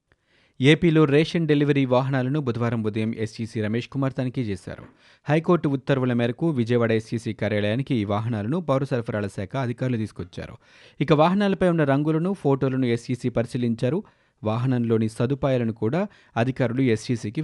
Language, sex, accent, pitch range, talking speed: Telugu, male, native, 115-150 Hz, 125 wpm